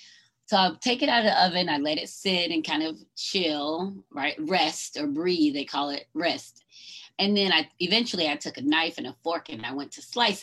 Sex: female